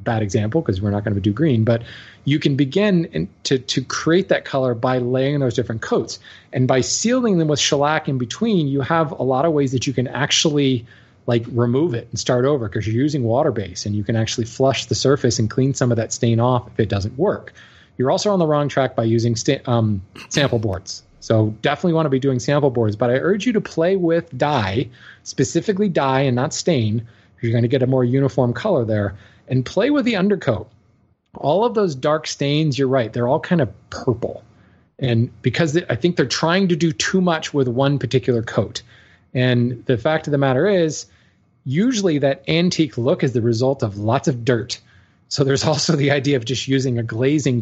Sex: male